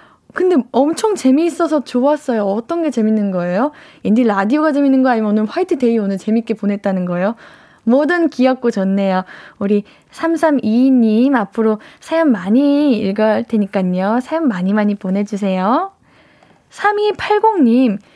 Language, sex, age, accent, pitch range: Korean, female, 10-29, native, 210-290 Hz